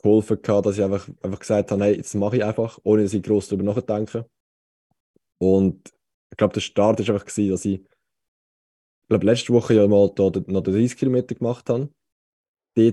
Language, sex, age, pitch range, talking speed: German, male, 20-39, 100-115 Hz, 180 wpm